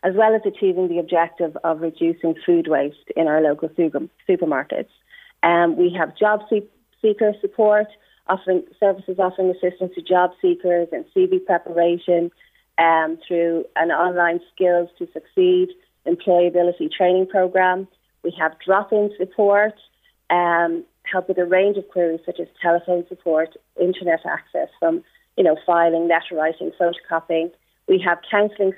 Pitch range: 170-200 Hz